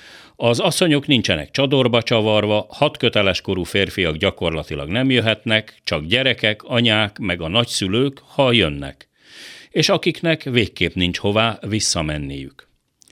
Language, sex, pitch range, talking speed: Hungarian, male, 90-130 Hz, 110 wpm